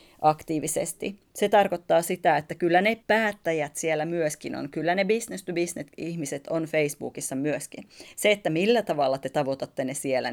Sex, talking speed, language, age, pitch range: female, 145 wpm, Finnish, 30-49, 150-190 Hz